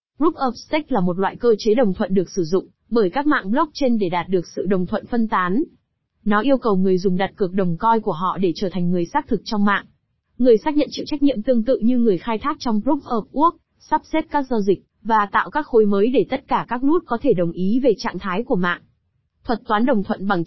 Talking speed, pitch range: 260 wpm, 195-260 Hz